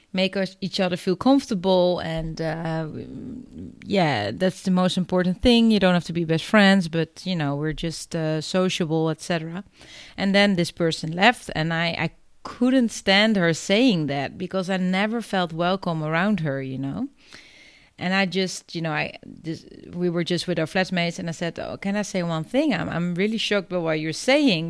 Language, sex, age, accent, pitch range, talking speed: English, female, 30-49, Dutch, 170-210 Hz, 195 wpm